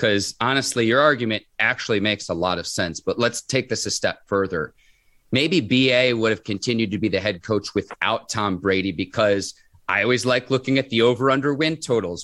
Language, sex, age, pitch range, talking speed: English, male, 30-49, 110-140 Hz, 195 wpm